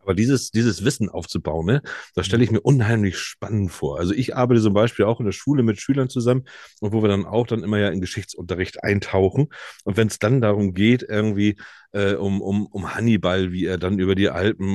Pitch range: 100-125 Hz